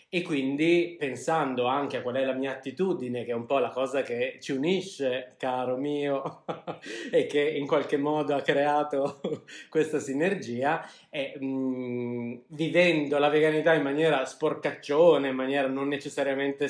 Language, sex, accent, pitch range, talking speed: Italian, male, native, 125-150 Hz, 150 wpm